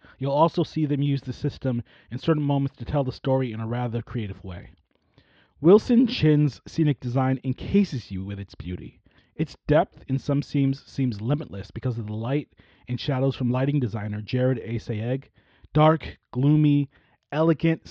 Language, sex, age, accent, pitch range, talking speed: English, male, 30-49, American, 120-155 Hz, 170 wpm